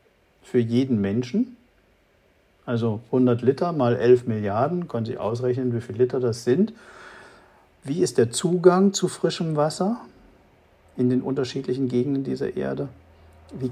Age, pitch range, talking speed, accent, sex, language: 50-69, 115-130 Hz, 135 wpm, German, male, German